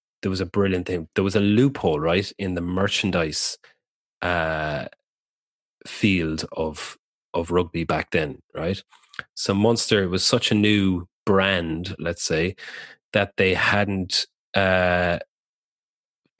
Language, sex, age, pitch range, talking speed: English, male, 30-49, 85-100 Hz, 125 wpm